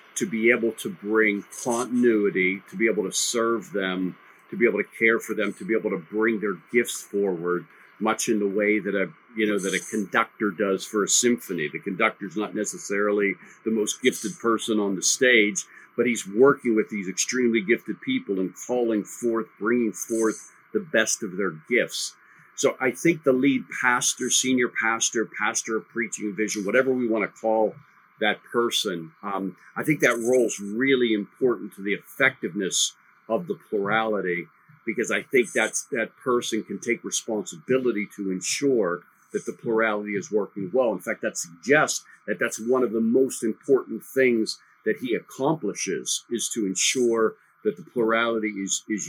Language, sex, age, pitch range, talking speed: English, male, 50-69, 100-120 Hz, 175 wpm